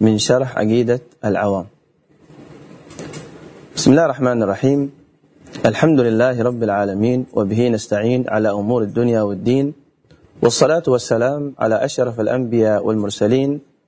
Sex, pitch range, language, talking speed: male, 115-145 Hz, Arabic, 105 wpm